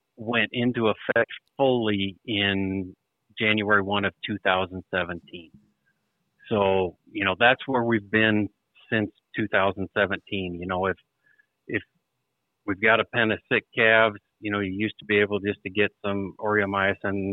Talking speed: 140 wpm